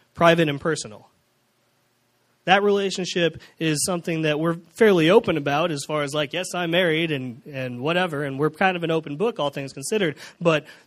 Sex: male